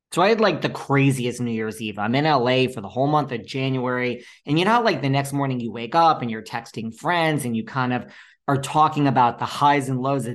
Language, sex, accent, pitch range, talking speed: English, male, American, 120-155 Hz, 260 wpm